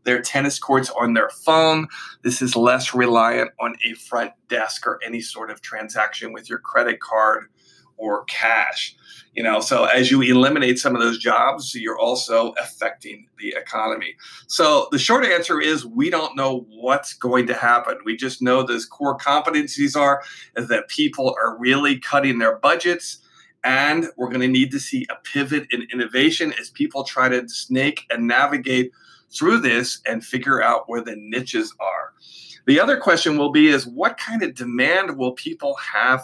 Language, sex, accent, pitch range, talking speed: English, male, American, 125-155 Hz, 175 wpm